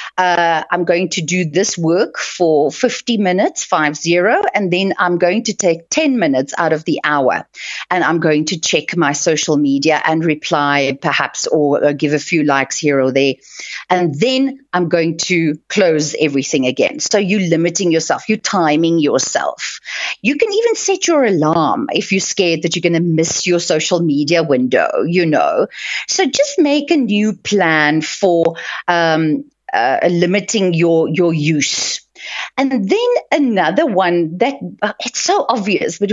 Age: 40-59